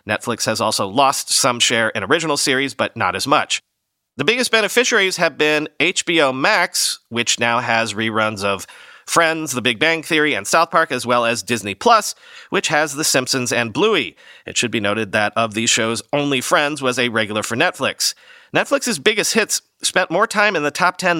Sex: male